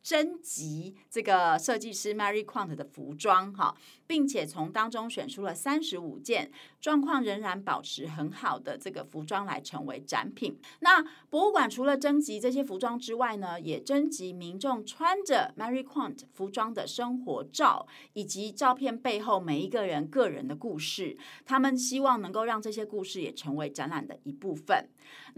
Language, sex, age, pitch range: Chinese, female, 30-49, 195-275 Hz